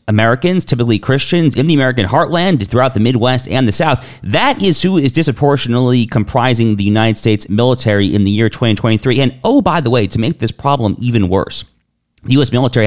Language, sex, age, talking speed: English, male, 40-59, 190 wpm